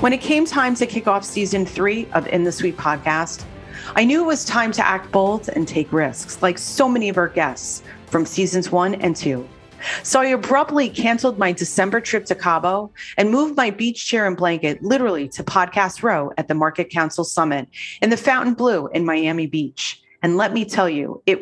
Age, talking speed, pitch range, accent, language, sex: 40-59, 205 wpm, 165-230 Hz, American, English, female